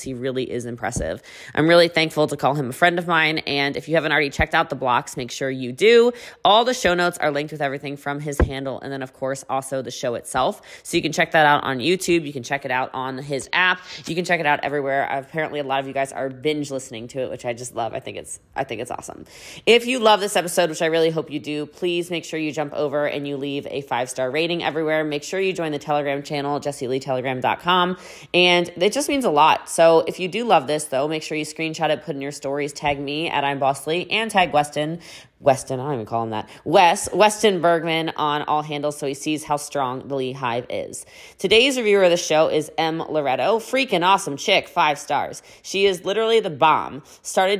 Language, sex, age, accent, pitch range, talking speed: English, female, 20-39, American, 140-170 Hz, 245 wpm